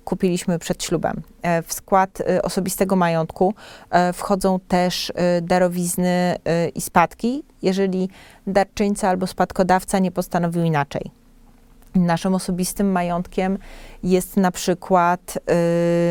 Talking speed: 95 wpm